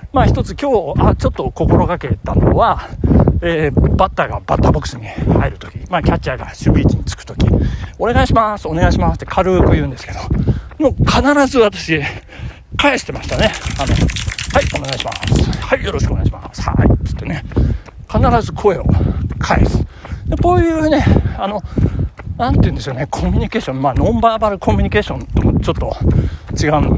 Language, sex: Japanese, male